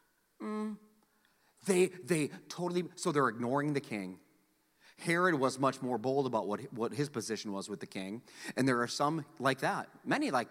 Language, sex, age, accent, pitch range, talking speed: English, male, 30-49, American, 145-245 Hz, 185 wpm